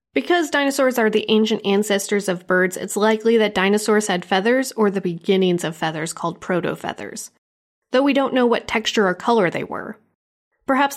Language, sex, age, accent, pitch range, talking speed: English, female, 30-49, American, 185-225 Hz, 175 wpm